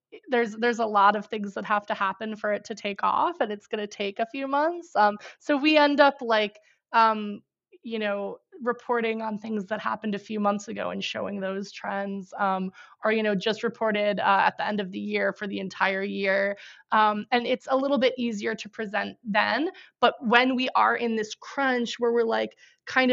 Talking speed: 215 wpm